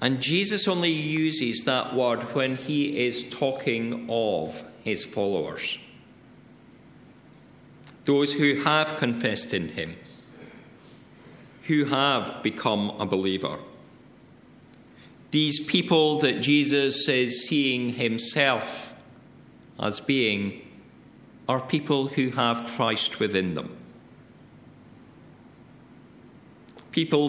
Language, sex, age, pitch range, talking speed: English, male, 50-69, 120-155 Hz, 90 wpm